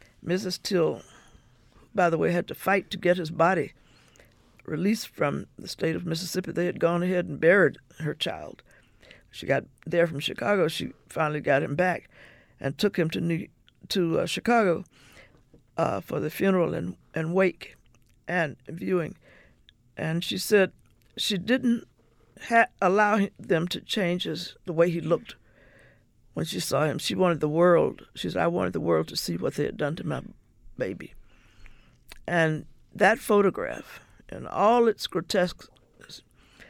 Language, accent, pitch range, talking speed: English, American, 155-190 Hz, 155 wpm